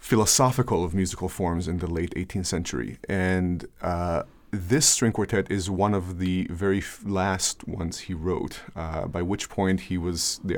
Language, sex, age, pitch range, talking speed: English, male, 30-49, 90-115 Hz, 170 wpm